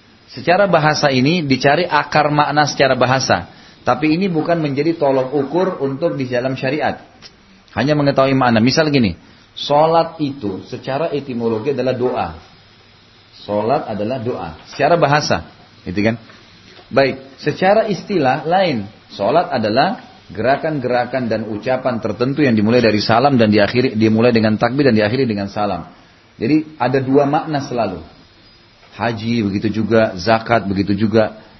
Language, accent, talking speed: Indonesian, native, 135 wpm